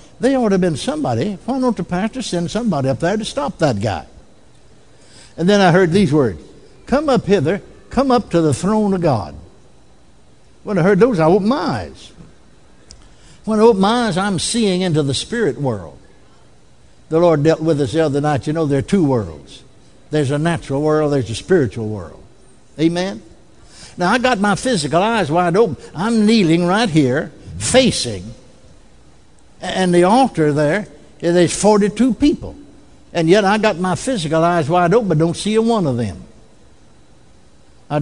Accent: American